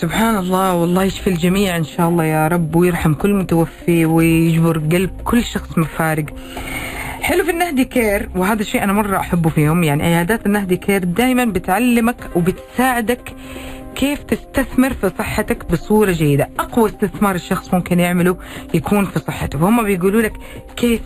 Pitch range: 175-230 Hz